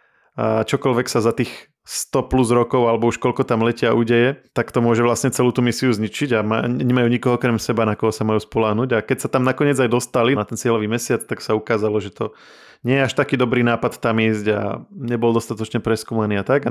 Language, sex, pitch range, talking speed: Slovak, male, 110-130 Hz, 225 wpm